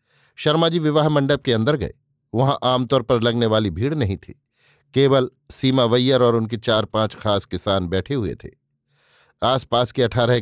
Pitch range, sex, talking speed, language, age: 115-145 Hz, male, 165 wpm, Hindi, 50-69